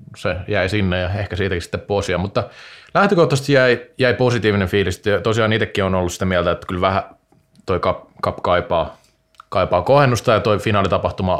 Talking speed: 165 wpm